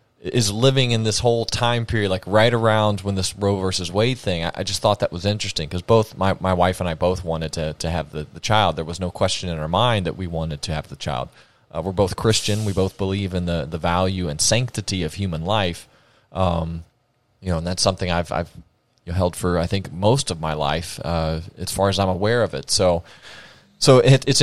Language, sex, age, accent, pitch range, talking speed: English, male, 30-49, American, 90-115 Hz, 235 wpm